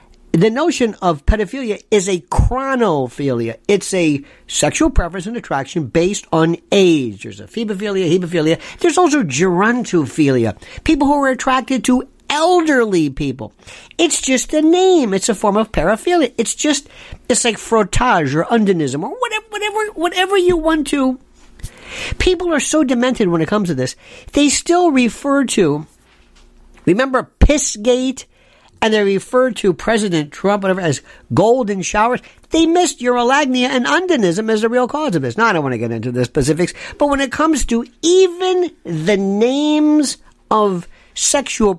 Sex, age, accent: male, 50-69, American